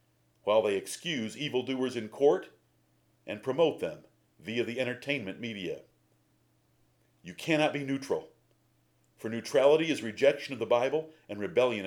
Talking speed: 130 wpm